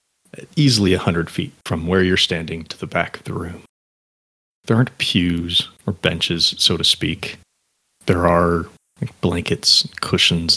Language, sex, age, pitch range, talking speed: English, male, 30-49, 85-105 Hz, 155 wpm